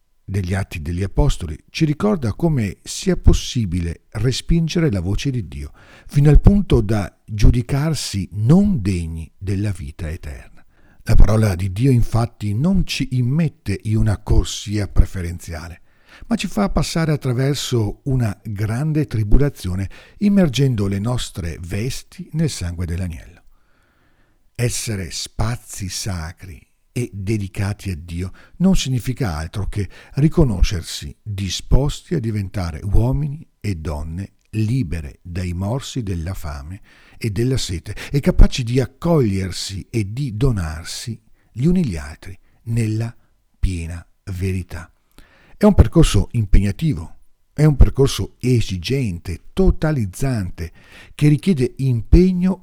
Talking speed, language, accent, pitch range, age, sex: 115 wpm, Italian, native, 90-135 Hz, 50-69, male